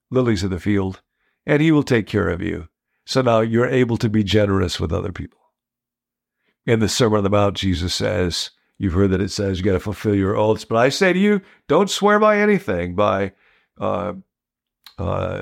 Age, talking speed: 50-69, 200 wpm